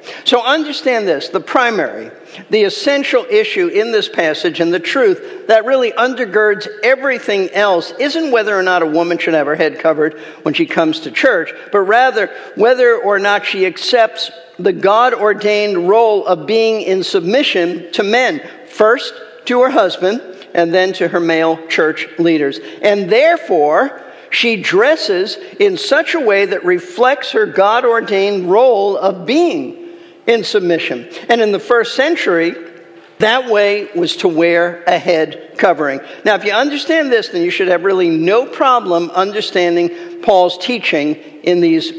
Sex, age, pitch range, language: male, 50-69, 170-255 Hz, English